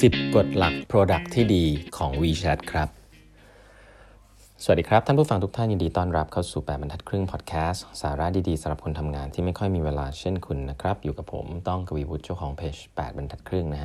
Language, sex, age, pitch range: Thai, male, 20-39, 75-95 Hz